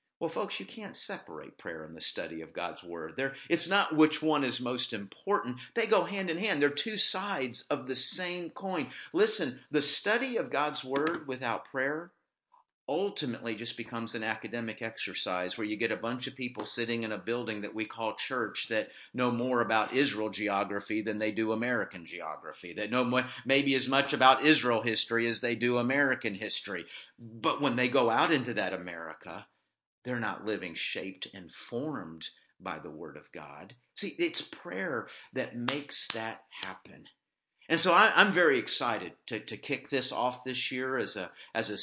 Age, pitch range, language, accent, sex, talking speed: 50-69, 115-150 Hz, English, American, male, 180 wpm